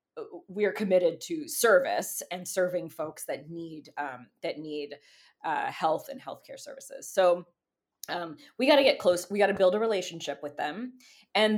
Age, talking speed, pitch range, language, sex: 20-39, 175 wpm, 170-230 Hz, English, female